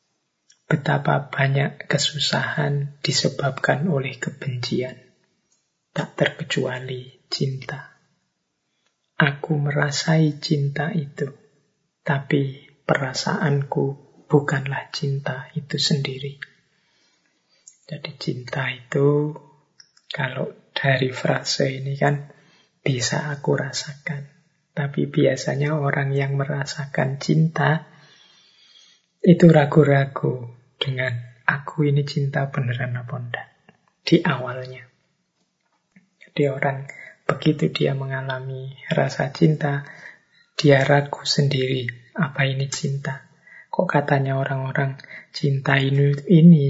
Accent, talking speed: native, 85 wpm